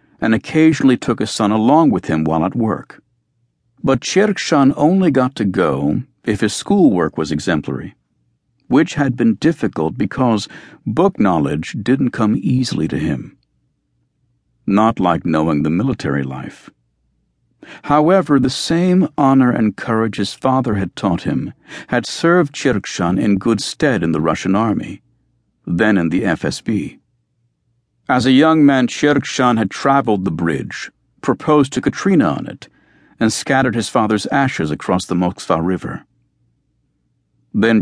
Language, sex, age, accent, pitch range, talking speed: English, male, 60-79, American, 95-130 Hz, 140 wpm